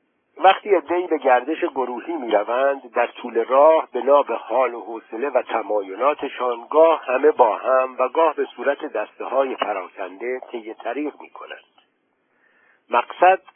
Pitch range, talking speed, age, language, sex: 120-165 Hz, 135 wpm, 60-79, Persian, male